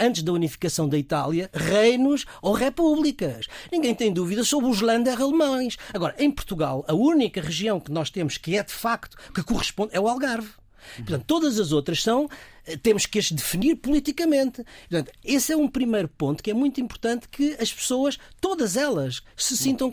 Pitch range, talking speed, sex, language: 165-260 Hz, 180 wpm, male, Portuguese